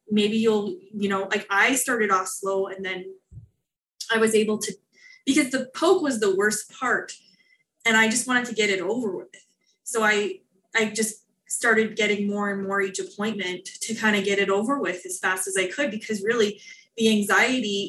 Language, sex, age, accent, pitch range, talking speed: English, female, 20-39, American, 195-230 Hz, 195 wpm